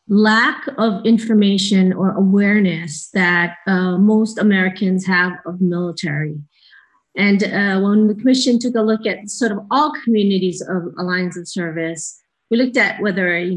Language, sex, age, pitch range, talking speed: English, female, 40-59, 180-225 Hz, 150 wpm